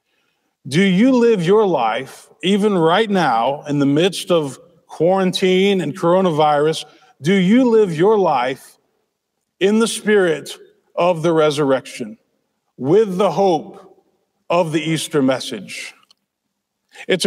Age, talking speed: 40-59, 120 wpm